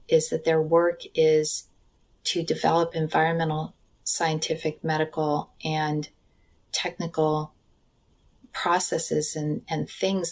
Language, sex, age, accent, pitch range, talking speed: English, female, 30-49, American, 155-175 Hz, 95 wpm